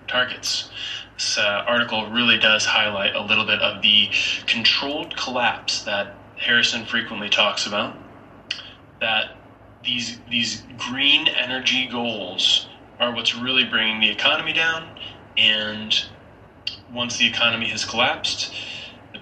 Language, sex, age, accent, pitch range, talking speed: English, male, 20-39, American, 105-120 Hz, 120 wpm